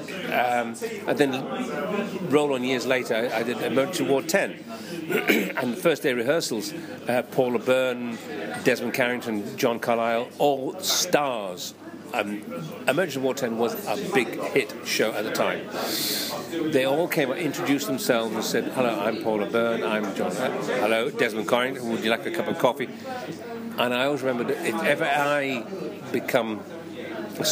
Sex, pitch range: male, 115-145 Hz